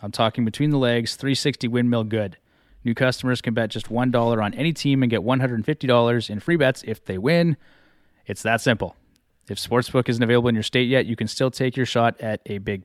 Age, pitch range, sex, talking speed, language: 20-39, 110-130 Hz, male, 215 wpm, English